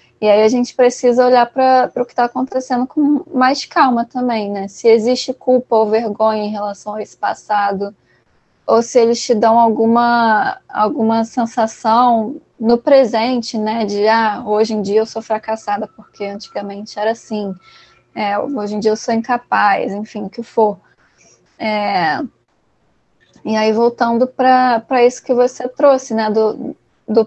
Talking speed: 160 wpm